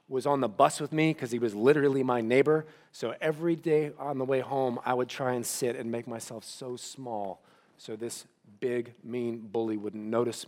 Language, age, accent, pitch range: English, 40-59, American, 120-155 Hz